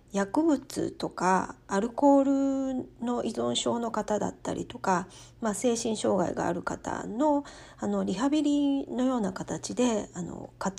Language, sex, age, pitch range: Japanese, female, 40-59, 185-265 Hz